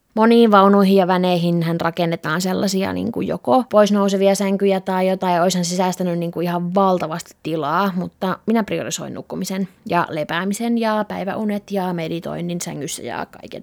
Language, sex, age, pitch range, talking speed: Finnish, female, 20-39, 180-210 Hz, 155 wpm